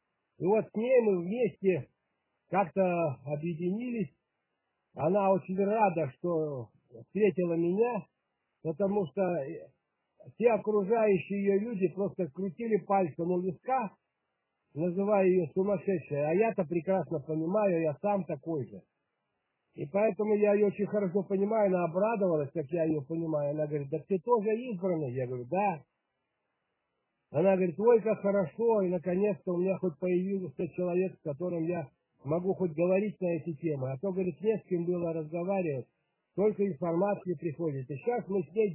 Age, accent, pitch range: 60-79, native, 160-200 Hz